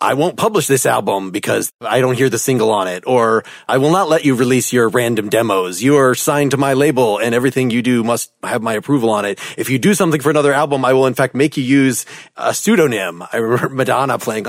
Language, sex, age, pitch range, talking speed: English, male, 30-49, 115-140 Hz, 245 wpm